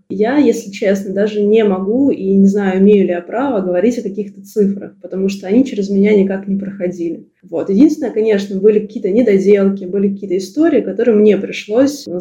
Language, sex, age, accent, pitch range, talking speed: Russian, female, 20-39, native, 190-220 Hz, 180 wpm